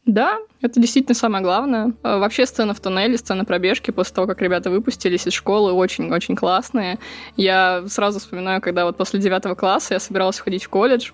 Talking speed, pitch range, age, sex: 180 wpm, 205-250 Hz, 20-39, female